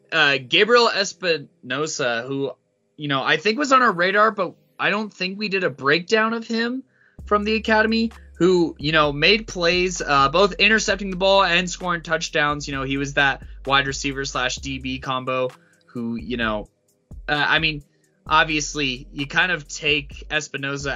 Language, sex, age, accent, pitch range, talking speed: English, male, 20-39, American, 130-180 Hz, 170 wpm